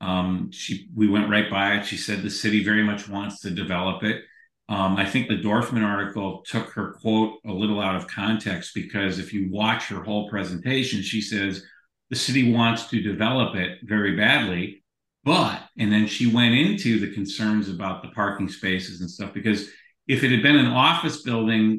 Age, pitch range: 50-69, 100-115 Hz